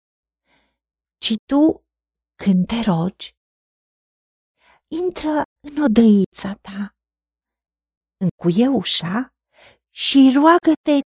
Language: Romanian